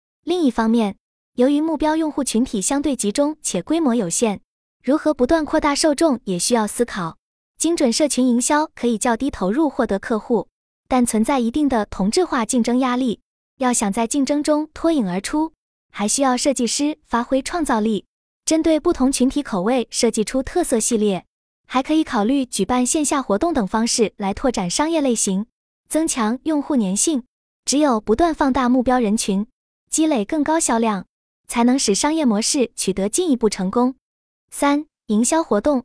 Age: 20-39